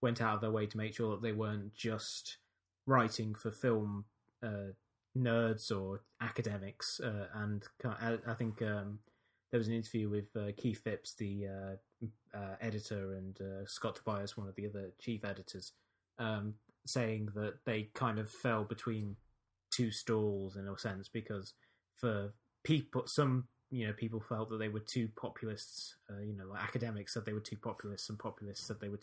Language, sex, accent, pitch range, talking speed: English, male, British, 100-115 Hz, 180 wpm